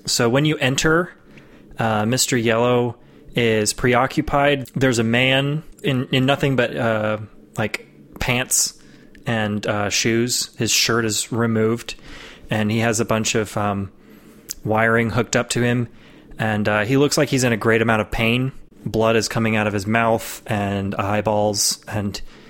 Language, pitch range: English, 110-130 Hz